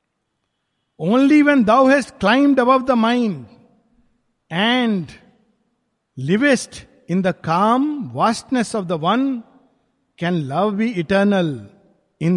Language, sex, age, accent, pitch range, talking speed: Hindi, male, 50-69, native, 180-240 Hz, 105 wpm